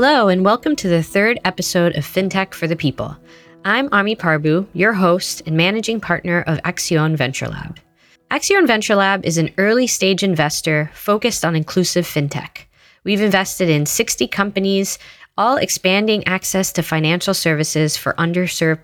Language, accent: English, American